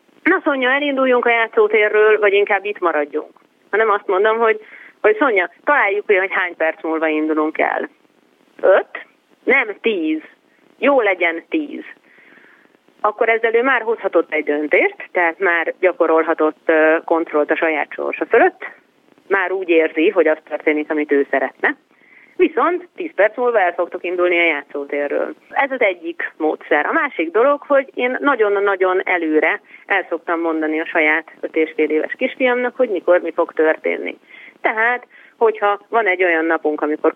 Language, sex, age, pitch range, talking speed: Hungarian, female, 30-49, 160-265 Hz, 150 wpm